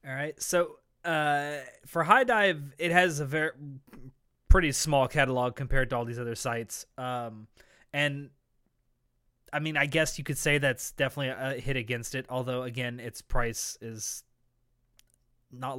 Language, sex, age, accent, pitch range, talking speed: English, male, 20-39, American, 120-145 Hz, 150 wpm